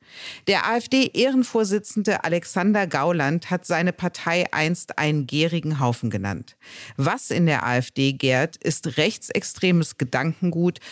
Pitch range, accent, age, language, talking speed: 140-185 Hz, German, 50-69, German, 110 wpm